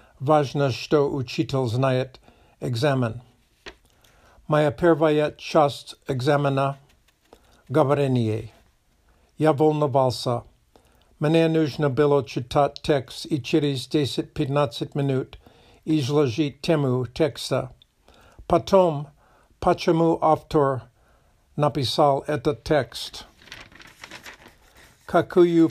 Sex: male